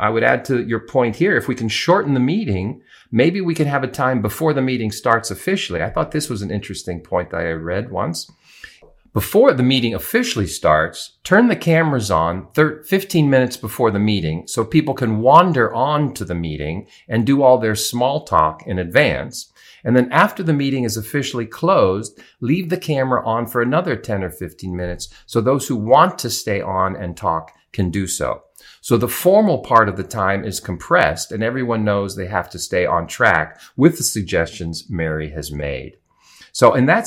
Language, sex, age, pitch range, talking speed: English, male, 40-59, 95-135 Hz, 195 wpm